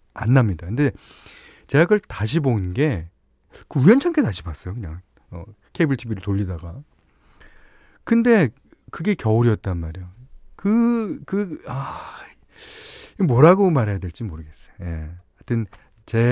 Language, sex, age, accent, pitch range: Korean, male, 40-59, native, 95-150 Hz